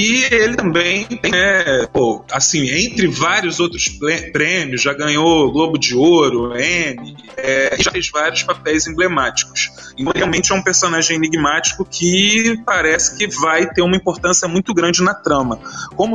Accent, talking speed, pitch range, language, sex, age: Brazilian, 155 wpm, 135-180 Hz, Portuguese, male, 20-39